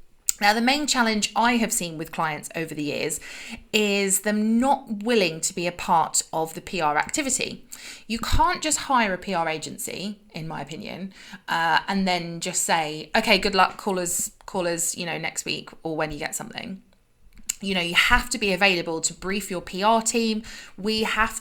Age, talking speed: 20-39, 195 wpm